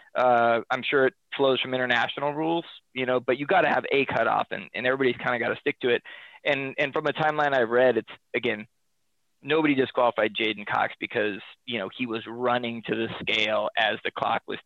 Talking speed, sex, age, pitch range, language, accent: 215 wpm, male, 20-39, 115-140 Hz, English, American